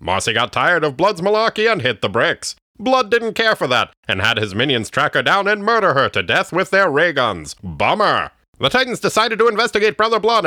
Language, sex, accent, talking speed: English, male, American, 225 wpm